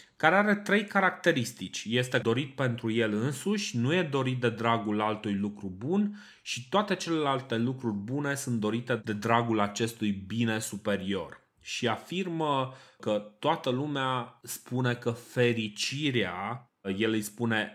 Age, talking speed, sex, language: 30-49, 135 wpm, male, Romanian